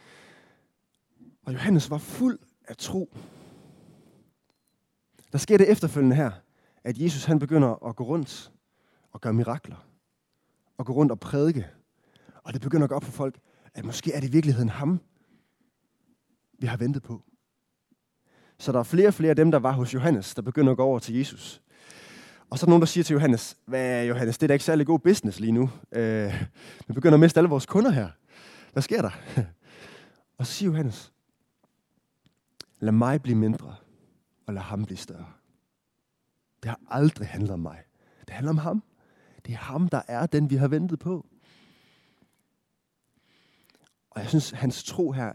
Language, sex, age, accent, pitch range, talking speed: Danish, male, 20-39, native, 115-155 Hz, 175 wpm